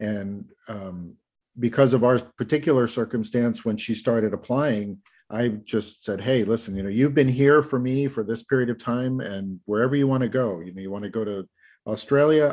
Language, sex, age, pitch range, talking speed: English, male, 50-69, 105-130 Hz, 190 wpm